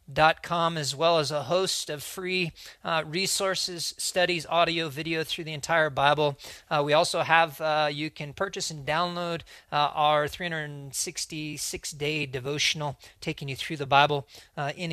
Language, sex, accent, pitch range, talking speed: English, male, American, 140-165 Hz, 155 wpm